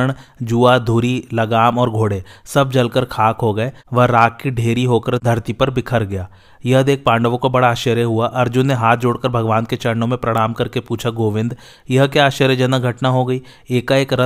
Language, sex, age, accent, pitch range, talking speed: Hindi, male, 30-49, native, 115-130 Hz, 145 wpm